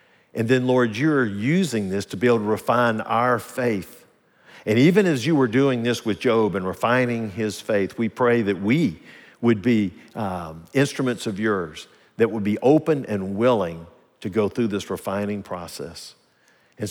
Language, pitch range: English, 100-125 Hz